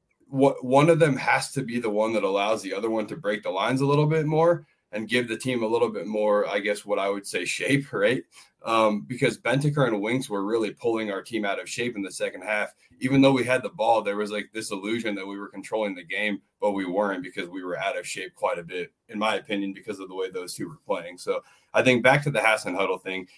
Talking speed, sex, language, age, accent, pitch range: 265 wpm, male, English, 20-39, American, 100-130 Hz